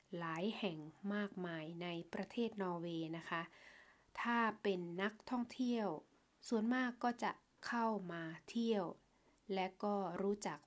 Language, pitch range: Thai, 185-235 Hz